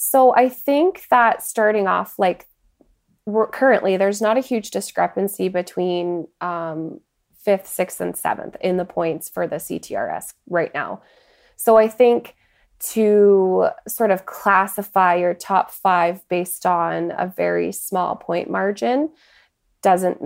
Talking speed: 135 wpm